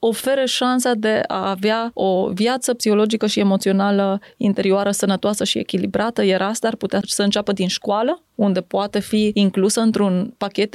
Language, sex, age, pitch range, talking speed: Romanian, female, 20-39, 195-235 Hz, 155 wpm